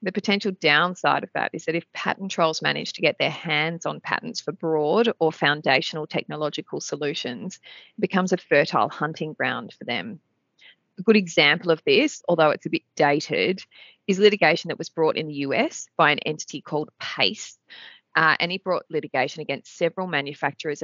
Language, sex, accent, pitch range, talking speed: English, female, Australian, 145-175 Hz, 180 wpm